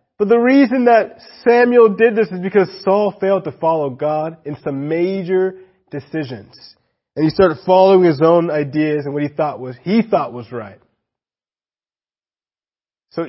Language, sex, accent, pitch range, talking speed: English, male, American, 145-190 Hz, 160 wpm